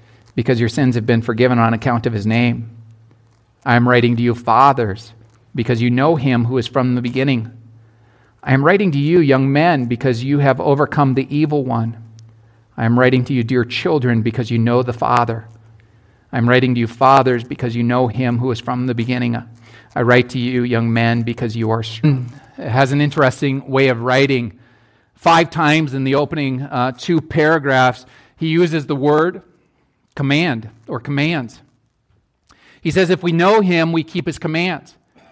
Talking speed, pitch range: 185 wpm, 120-165 Hz